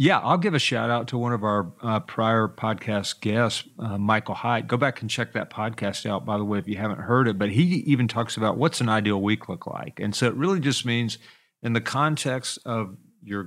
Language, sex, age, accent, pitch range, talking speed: English, male, 40-59, American, 105-125 Hz, 240 wpm